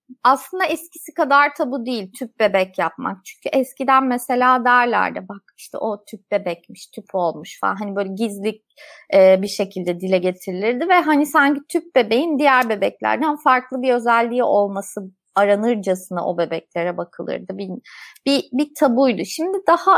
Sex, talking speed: female, 145 wpm